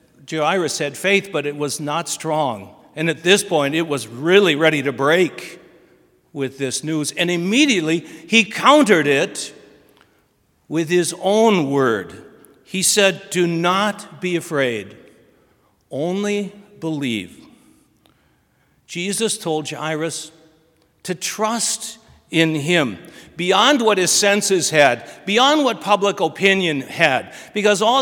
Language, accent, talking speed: English, American, 120 wpm